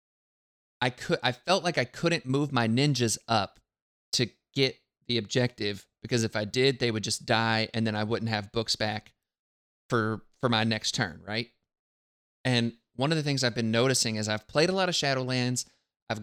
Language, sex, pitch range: English, male, 110-140 Hz